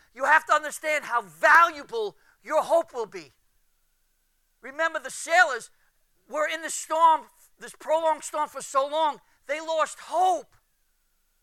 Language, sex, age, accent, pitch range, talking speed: English, male, 50-69, American, 240-365 Hz, 135 wpm